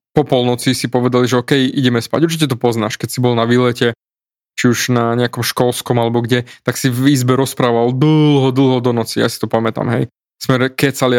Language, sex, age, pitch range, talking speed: Slovak, male, 20-39, 120-145 Hz, 210 wpm